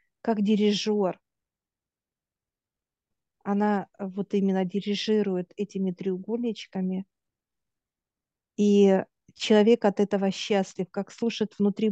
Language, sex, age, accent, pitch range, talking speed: Russian, female, 50-69, native, 190-215 Hz, 80 wpm